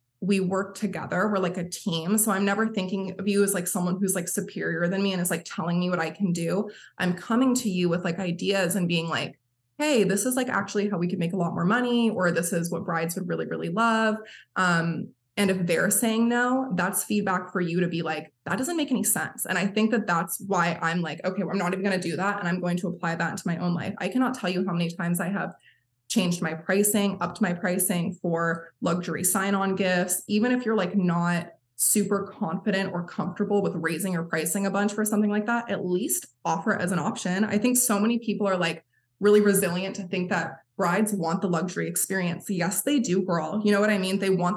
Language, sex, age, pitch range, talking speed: English, female, 20-39, 175-200 Hz, 240 wpm